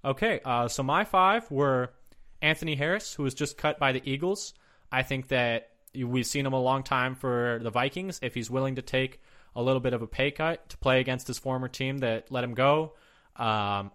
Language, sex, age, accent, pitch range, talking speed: English, male, 20-39, American, 115-140 Hz, 215 wpm